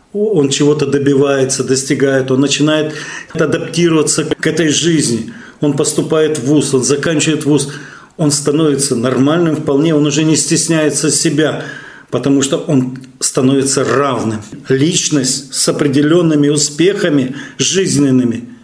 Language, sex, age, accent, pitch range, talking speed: Russian, male, 40-59, native, 130-150 Hz, 115 wpm